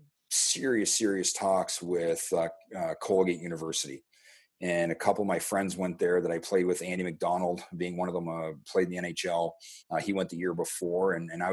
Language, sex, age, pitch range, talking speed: English, male, 30-49, 85-95 Hz, 210 wpm